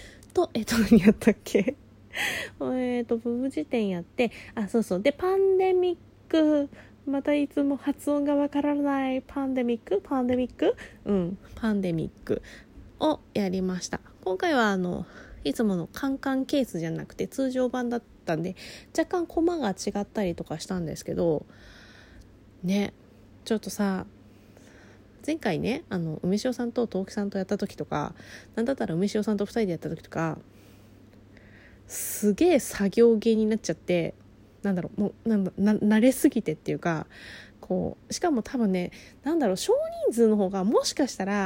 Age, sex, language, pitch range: 20-39, female, Japanese, 180-280 Hz